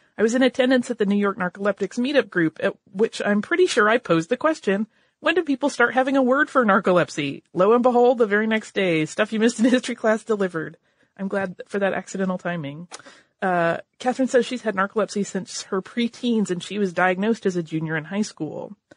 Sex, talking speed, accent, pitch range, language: female, 215 wpm, American, 175-235 Hz, English